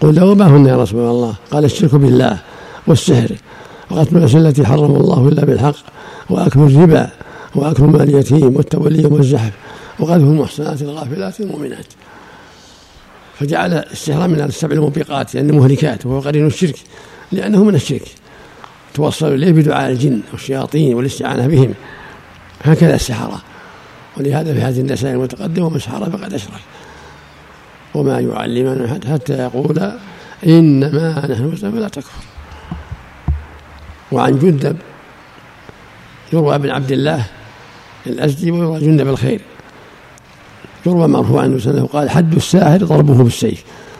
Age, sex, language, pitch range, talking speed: 60-79, male, Arabic, 130-155 Hz, 115 wpm